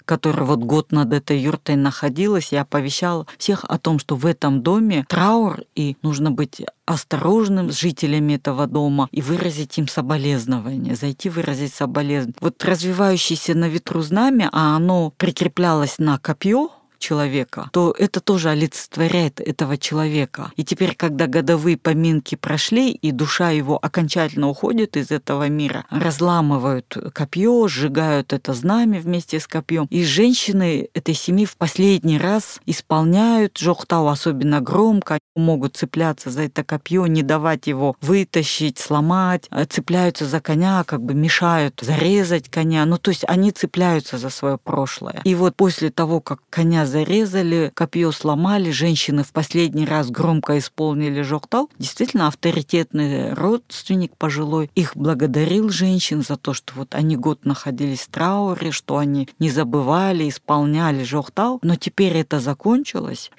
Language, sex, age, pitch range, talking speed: Russian, female, 40-59, 145-180 Hz, 145 wpm